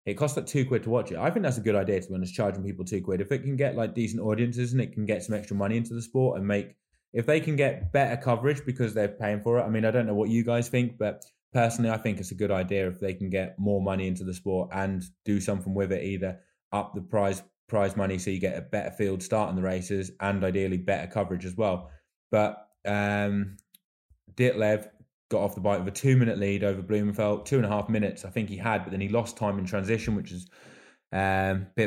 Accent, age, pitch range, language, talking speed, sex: British, 20-39, 95-115 Hz, English, 260 wpm, male